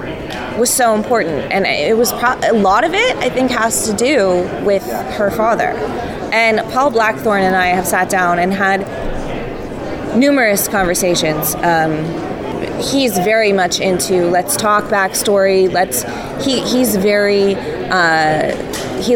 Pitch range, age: 190-235 Hz, 20-39